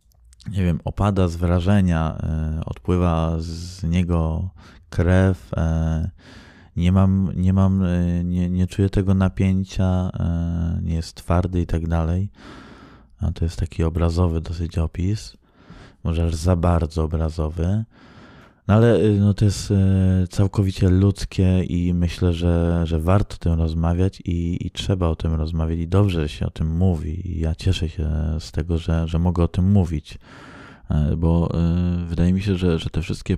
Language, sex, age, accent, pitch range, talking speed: Polish, male, 20-39, native, 80-95 Hz, 150 wpm